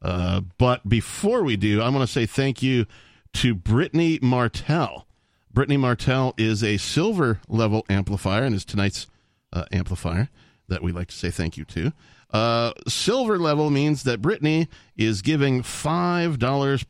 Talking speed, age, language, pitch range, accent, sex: 145 wpm, 40-59, English, 105-140 Hz, American, male